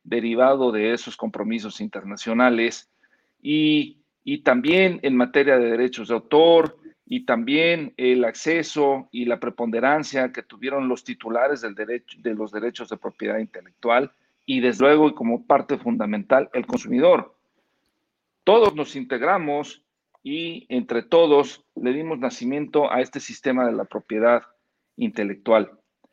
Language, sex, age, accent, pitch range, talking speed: Spanish, male, 50-69, Mexican, 115-175 Hz, 135 wpm